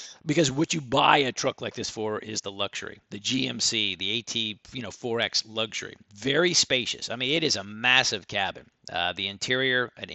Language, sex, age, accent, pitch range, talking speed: English, male, 40-59, American, 110-150 Hz, 195 wpm